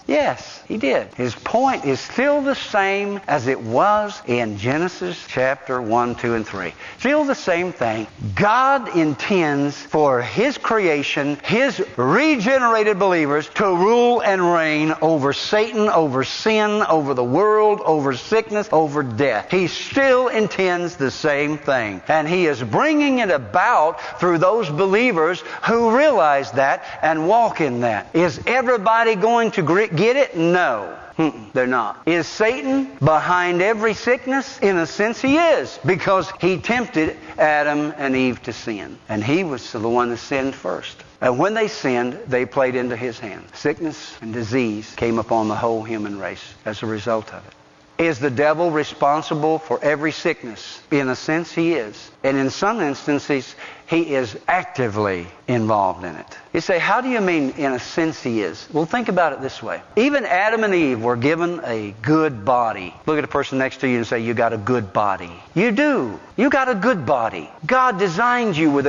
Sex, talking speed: male, 175 wpm